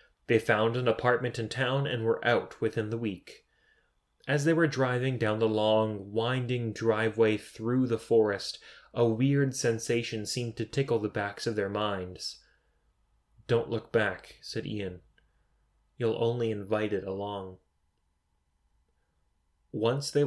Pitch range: 105-125 Hz